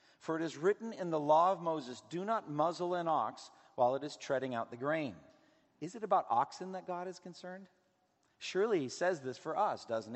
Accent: American